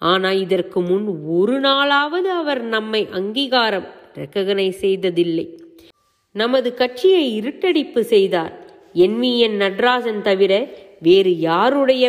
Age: 30-49